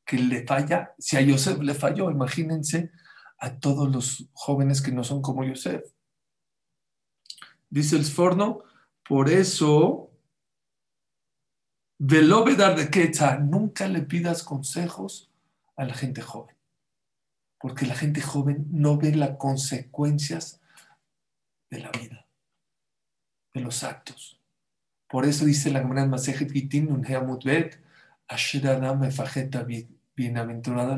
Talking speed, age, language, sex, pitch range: 110 wpm, 50-69, English, male, 130-150 Hz